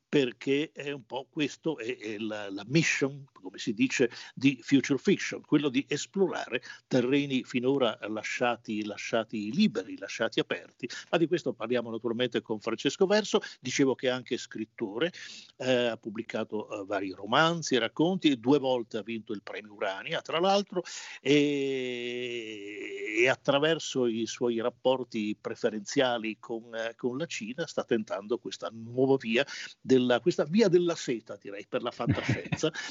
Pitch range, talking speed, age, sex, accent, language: 115-145 Hz, 150 wpm, 50-69, male, native, Italian